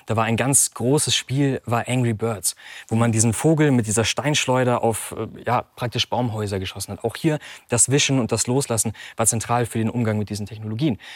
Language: German